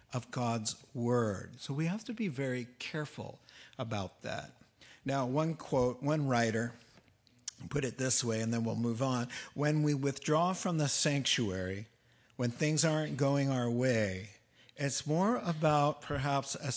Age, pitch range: 60-79, 120-155 Hz